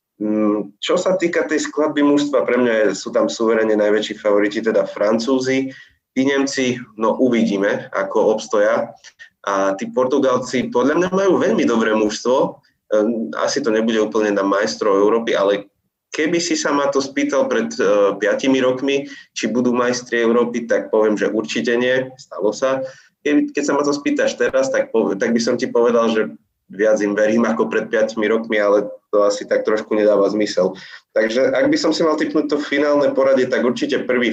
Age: 20-39